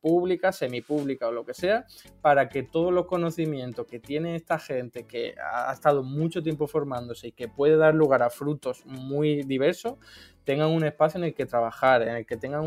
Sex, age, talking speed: male, 20-39, 195 wpm